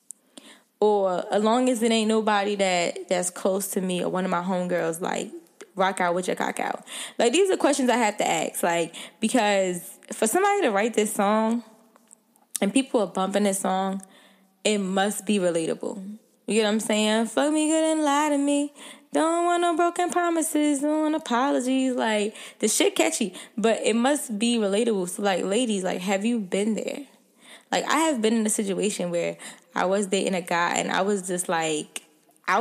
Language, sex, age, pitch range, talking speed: English, female, 10-29, 200-255 Hz, 195 wpm